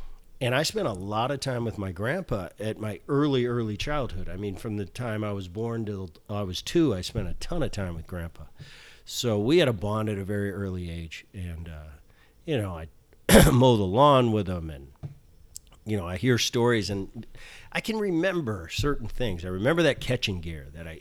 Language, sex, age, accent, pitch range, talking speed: English, male, 40-59, American, 95-120 Hz, 210 wpm